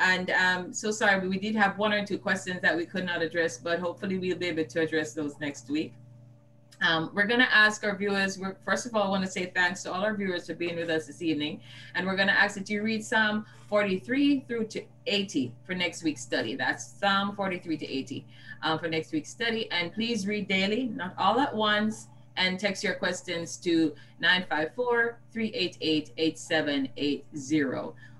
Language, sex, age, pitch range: English, female, 30-49, 155-210 Hz